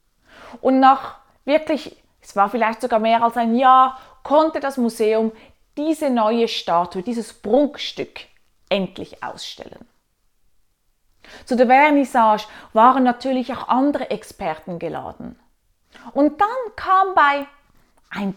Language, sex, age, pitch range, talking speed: German, female, 30-49, 235-335 Hz, 115 wpm